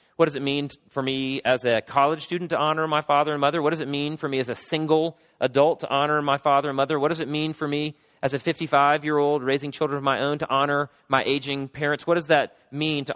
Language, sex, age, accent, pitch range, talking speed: English, male, 40-59, American, 135-160 Hz, 255 wpm